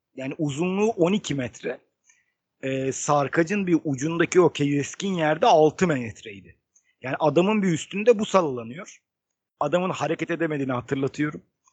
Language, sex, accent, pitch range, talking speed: Turkish, male, native, 145-185 Hz, 120 wpm